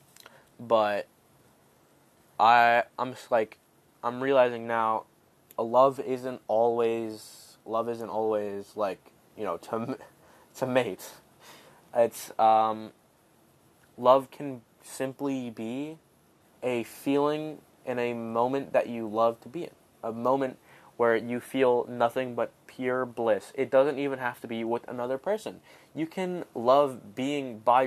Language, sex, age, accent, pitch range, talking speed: English, male, 10-29, American, 115-140 Hz, 130 wpm